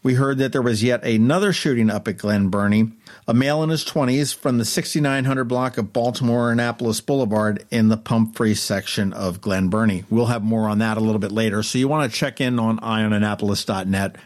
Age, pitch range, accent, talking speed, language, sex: 50-69, 110-140 Hz, American, 205 wpm, English, male